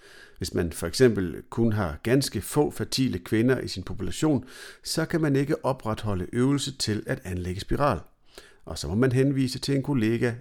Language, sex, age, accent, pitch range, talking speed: Danish, male, 50-69, native, 90-125 Hz, 180 wpm